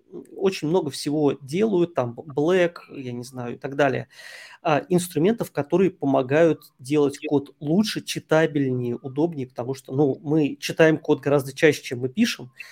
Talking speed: 150 wpm